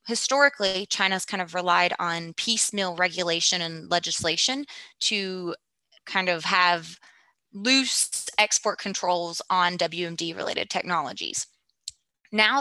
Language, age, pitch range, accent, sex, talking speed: English, 20-39, 180-215 Hz, American, female, 100 wpm